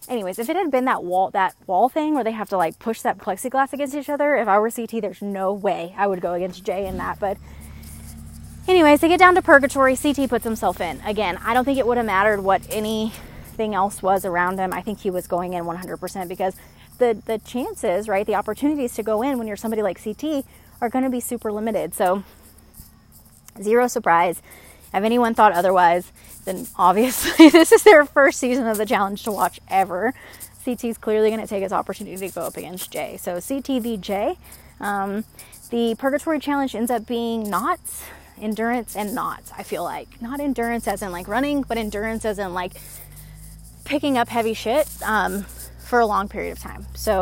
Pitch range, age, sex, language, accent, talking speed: 190-250 Hz, 20-39, female, English, American, 205 wpm